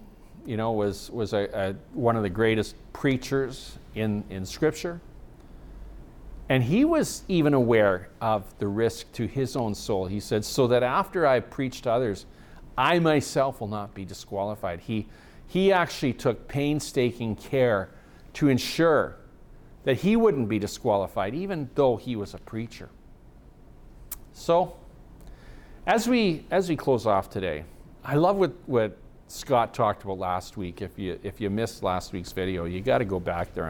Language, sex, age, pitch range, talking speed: English, male, 50-69, 95-135 Hz, 160 wpm